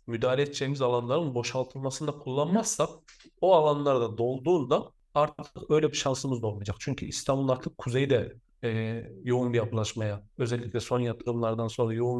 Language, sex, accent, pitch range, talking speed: Turkish, male, native, 120-150 Hz, 130 wpm